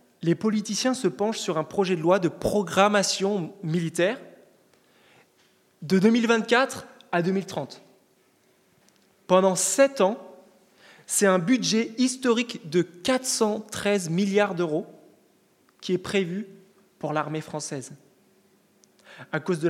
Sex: male